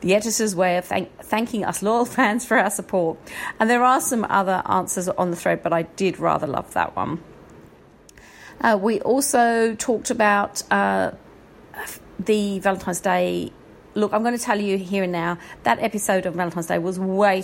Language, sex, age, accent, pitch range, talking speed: English, female, 40-59, British, 180-205 Hz, 180 wpm